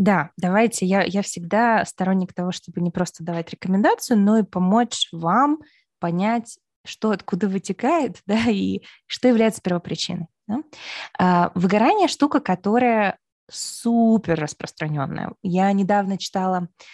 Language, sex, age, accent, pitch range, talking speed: Russian, female, 20-39, native, 175-220 Hz, 125 wpm